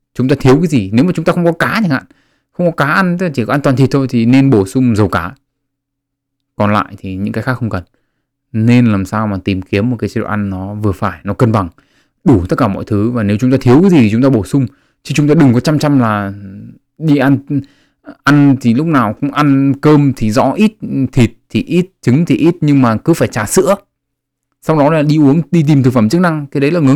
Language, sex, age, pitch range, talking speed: Vietnamese, male, 20-39, 105-135 Hz, 265 wpm